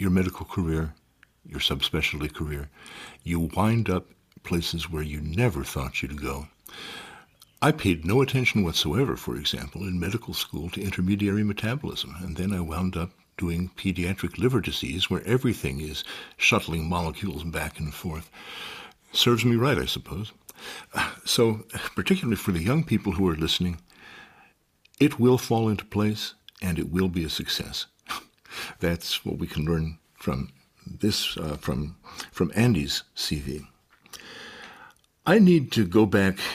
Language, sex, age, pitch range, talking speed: English, male, 60-79, 80-110 Hz, 145 wpm